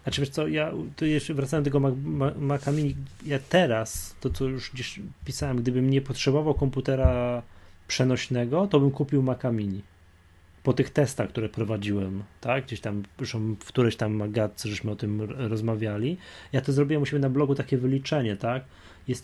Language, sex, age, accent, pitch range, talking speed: Polish, male, 20-39, native, 105-135 Hz, 165 wpm